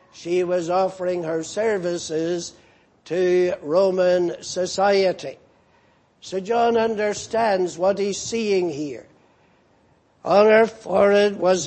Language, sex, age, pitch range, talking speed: English, male, 60-79, 175-210 Hz, 100 wpm